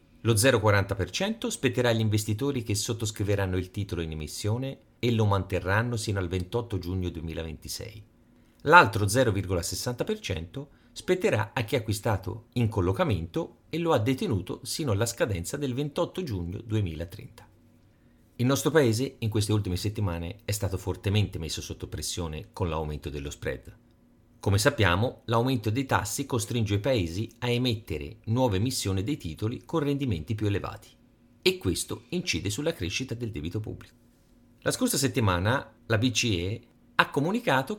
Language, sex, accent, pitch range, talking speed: Italian, male, native, 95-125 Hz, 140 wpm